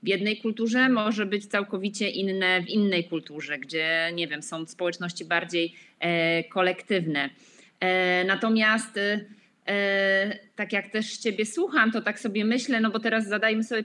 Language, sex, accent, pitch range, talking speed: Polish, female, native, 175-210 Hz, 150 wpm